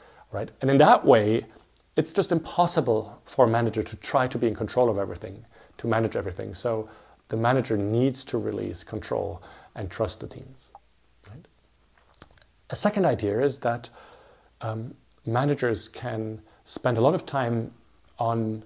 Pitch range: 105-130 Hz